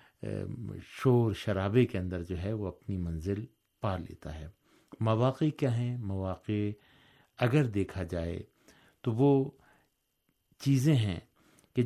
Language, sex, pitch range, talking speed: Urdu, male, 95-120 Hz, 120 wpm